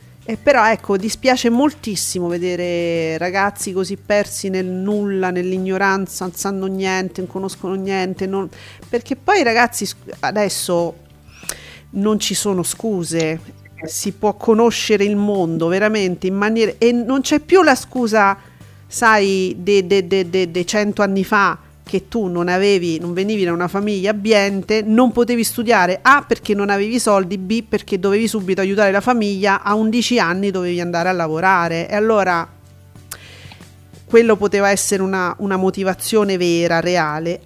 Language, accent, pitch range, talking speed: Italian, native, 180-225 Hz, 145 wpm